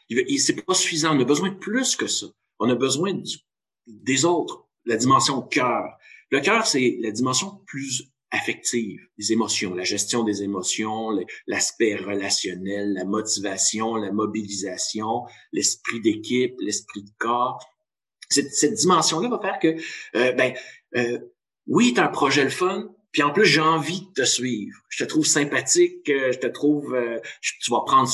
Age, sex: 50-69, male